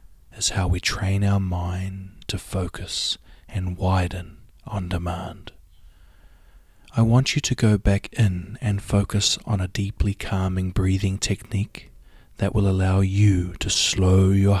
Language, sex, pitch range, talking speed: English, male, 90-105 Hz, 140 wpm